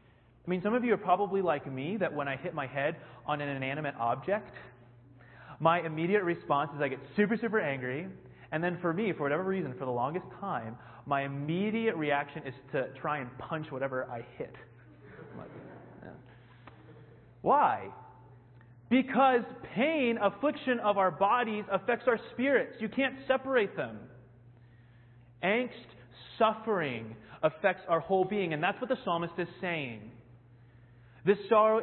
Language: English